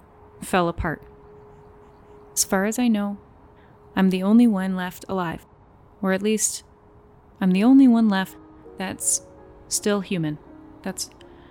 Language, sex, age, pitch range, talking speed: English, female, 30-49, 180-225 Hz, 130 wpm